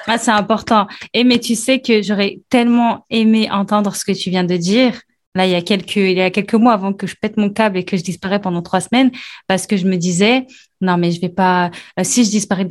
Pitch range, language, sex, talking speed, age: 195-265 Hz, French, female, 255 wpm, 20-39